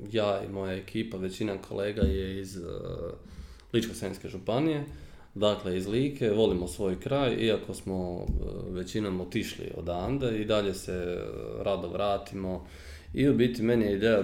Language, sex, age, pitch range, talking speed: Croatian, male, 20-39, 90-110 Hz, 155 wpm